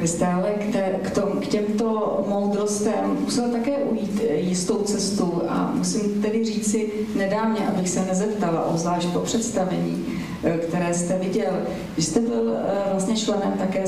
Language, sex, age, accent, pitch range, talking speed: Czech, female, 40-59, native, 175-195 Hz, 140 wpm